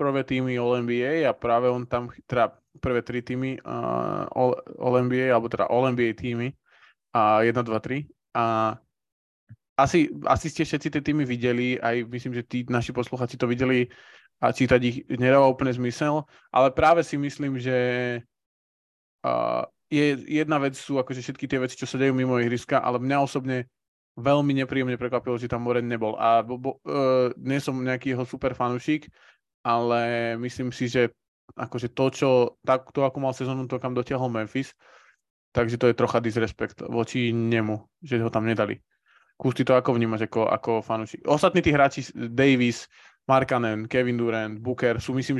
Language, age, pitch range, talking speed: Slovak, 20-39, 120-130 Hz, 165 wpm